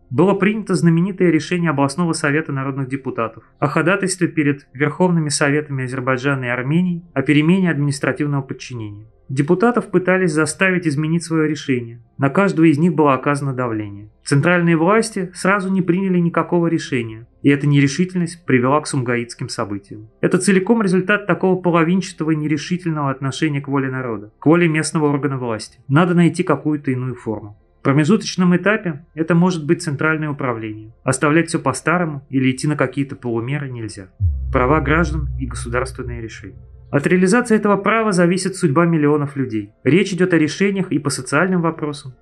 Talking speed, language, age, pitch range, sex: 150 wpm, Russian, 30-49, 130-175 Hz, male